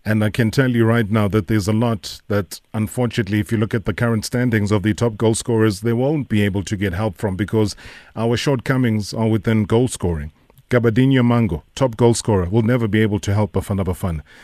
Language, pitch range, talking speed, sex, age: English, 105-125 Hz, 220 wpm, male, 40-59